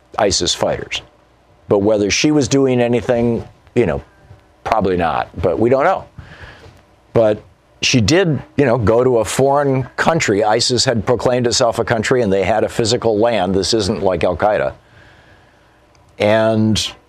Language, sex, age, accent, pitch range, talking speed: English, male, 50-69, American, 100-125 Hz, 150 wpm